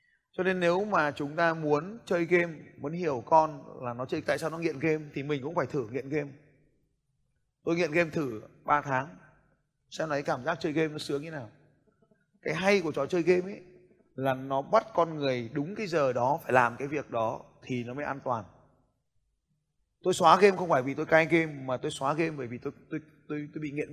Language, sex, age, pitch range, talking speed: Vietnamese, male, 20-39, 140-170 Hz, 225 wpm